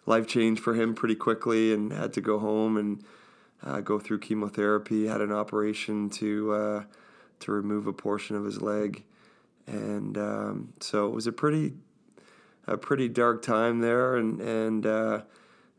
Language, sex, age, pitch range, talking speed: English, male, 20-39, 105-115 Hz, 160 wpm